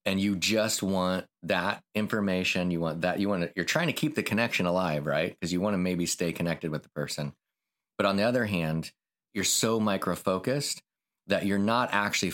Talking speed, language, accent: 210 wpm, English, American